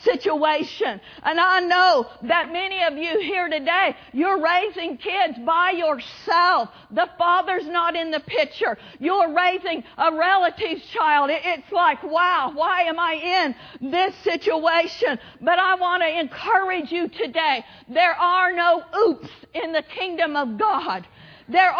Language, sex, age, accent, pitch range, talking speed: English, female, 50-69, American, 320-370 Hz, 145 wpm